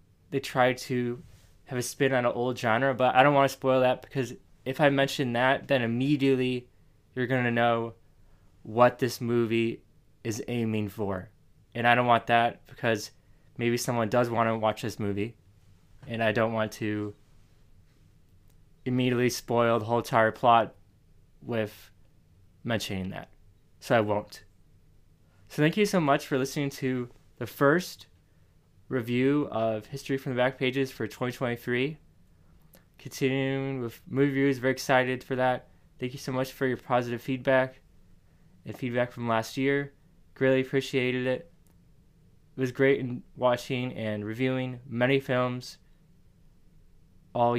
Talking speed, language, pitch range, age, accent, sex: 150 wpm, English, 110-130 Hz, 20-39, American, male